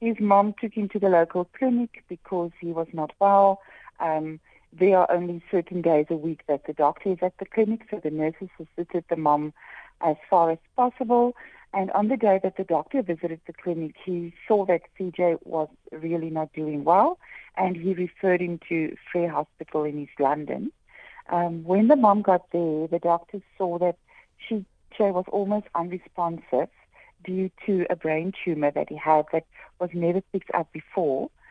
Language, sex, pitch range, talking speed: English, female, 165-195 Hz, 185 wpm